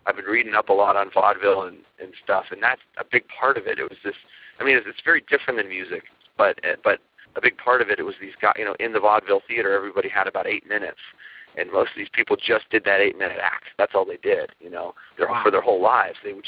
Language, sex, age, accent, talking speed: English, male, 40-59, American, 275 wpm